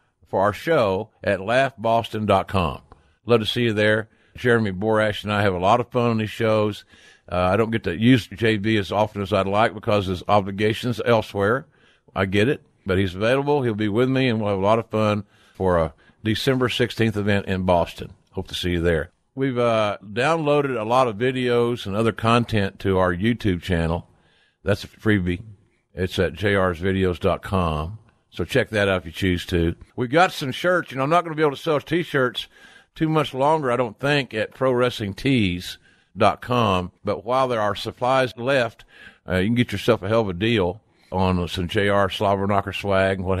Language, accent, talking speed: English, American, 200 wpm